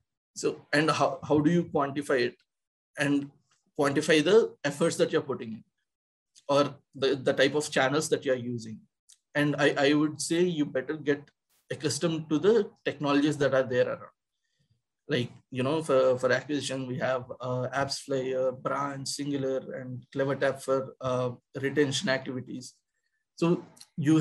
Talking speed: 155 wpm